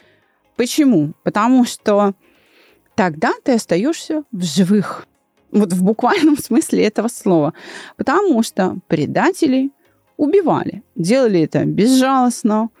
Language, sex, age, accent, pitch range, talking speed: Russian, female, 30-49, native, 175-255 Hz, 100 wpm